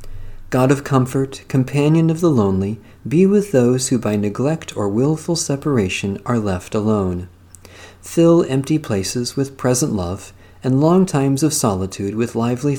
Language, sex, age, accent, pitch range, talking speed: English, male, 40-59, American, 95-140 Hz, 150 wpm